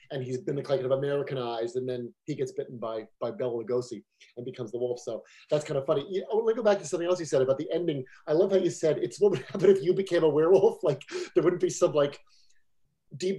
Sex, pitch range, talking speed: male, 145-200 Hz, 265 wpm